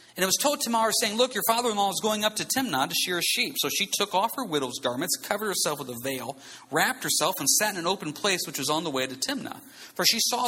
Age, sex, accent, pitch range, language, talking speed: 40-59, male, American, 145-225 Hz, English, 275 wpm